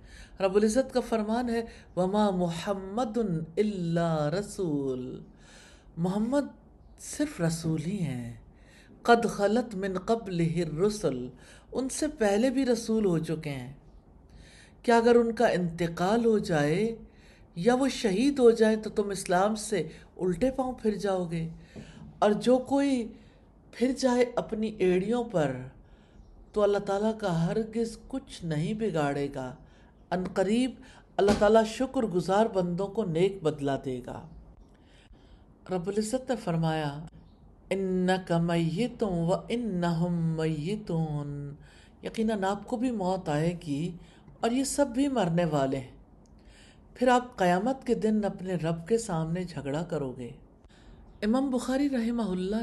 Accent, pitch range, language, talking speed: Indian, 165-225 Hz, English, 130 wpm